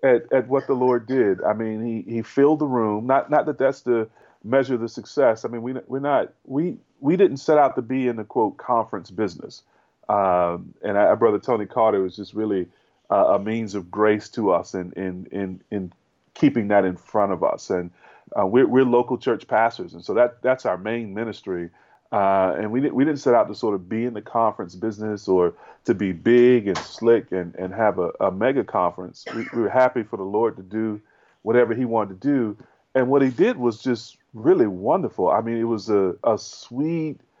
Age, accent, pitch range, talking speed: 30-49, American, 100-130 Hz, 220 wpm